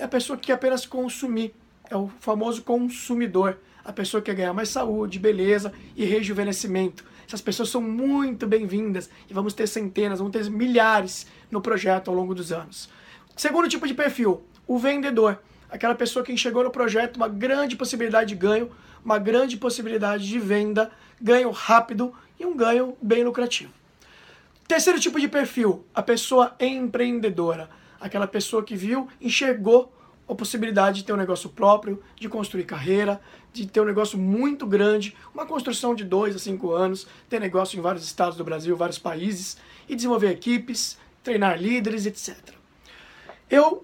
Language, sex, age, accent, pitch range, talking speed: Portuguese, male, 20-39, Brazilian, 200-245 Hz, 165 wpm